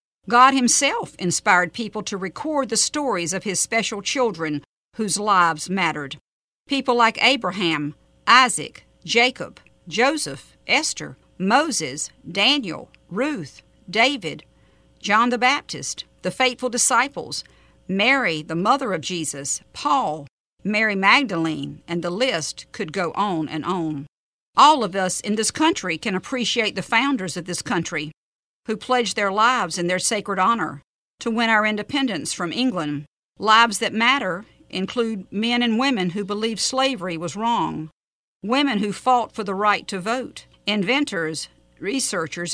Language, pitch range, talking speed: English, 180-245 Hz, 135 wpm